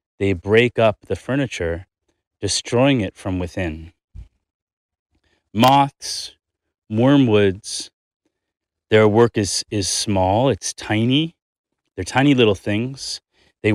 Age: 30-49